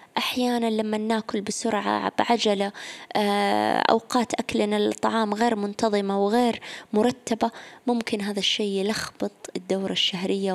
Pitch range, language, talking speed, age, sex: 200-245 Hz, Arabic, 100 wpm, 20-39, female